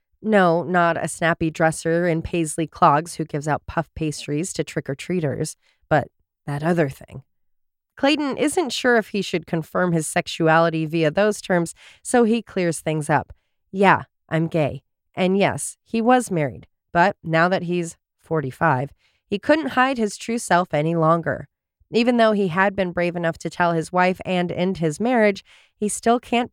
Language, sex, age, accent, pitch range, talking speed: English, female, 30-49, American, 165-230 Hz, 170 wpm